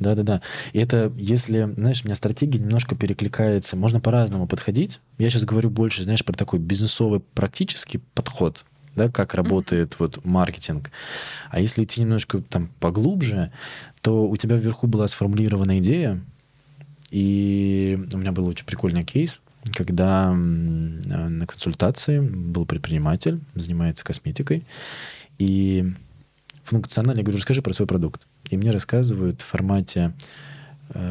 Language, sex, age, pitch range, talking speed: Russian, male, 20-39, 90-120 Hz, 135 wpm